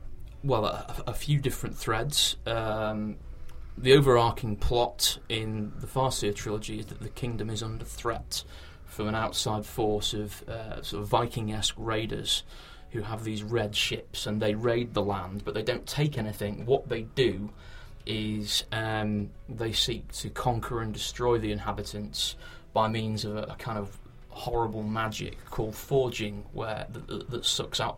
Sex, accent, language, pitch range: male, British, English, 105-115 Hz